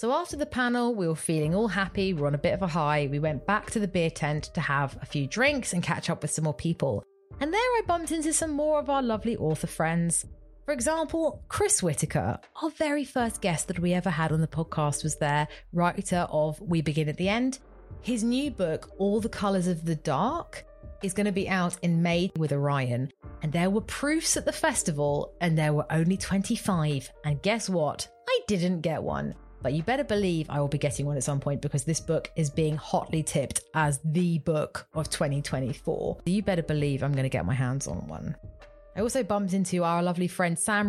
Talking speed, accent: 225 wpm, British